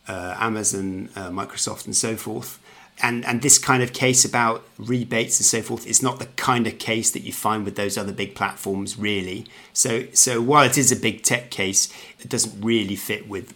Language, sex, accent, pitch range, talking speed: English, male, British, 100-120 Hz, 210 wpm